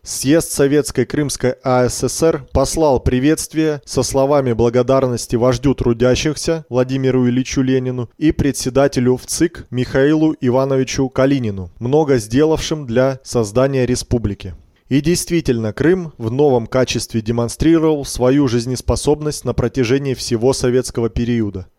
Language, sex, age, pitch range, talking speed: Russian, male, 20-39, 120-145 Hz, 105 wpm